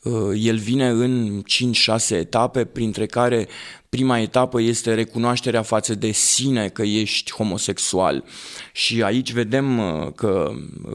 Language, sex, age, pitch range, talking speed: Romanian, male, 20-39, 110-120 Hz, 115 wpm